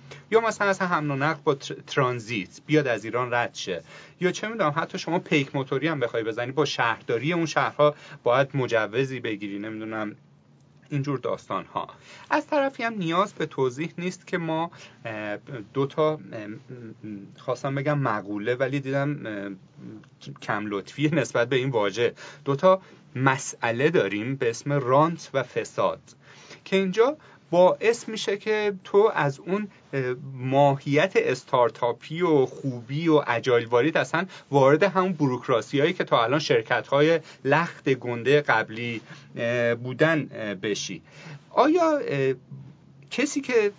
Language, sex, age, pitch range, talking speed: Persian, male, 30-49, 125-165 Hz, 130 wpm